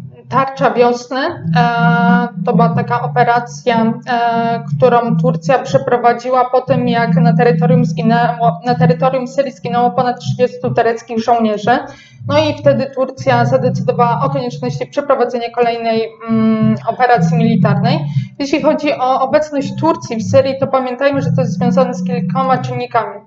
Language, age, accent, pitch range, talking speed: Polish, 20-39, native, 180-250 Hz, 125 wpm